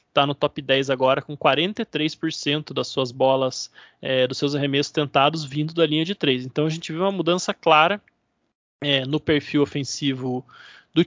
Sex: male